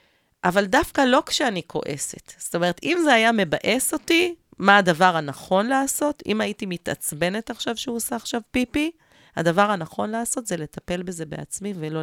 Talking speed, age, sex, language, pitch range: 160 wpm, 30-49, female, Hebrew, 160-235 Hz